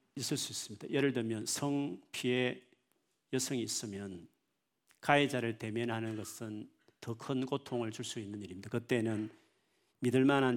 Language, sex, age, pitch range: Korean, male, 40-59, 110-145 Hz